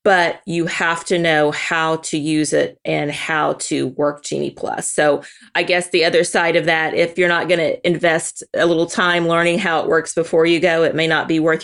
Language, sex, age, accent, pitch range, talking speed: English, female, 30-49, American, 160-180 Hz, 225 wpm